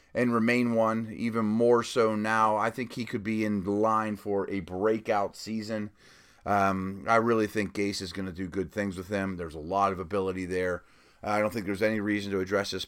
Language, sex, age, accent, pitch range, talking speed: English, male, 30-49, American, 105-135 Hz, 220 wpm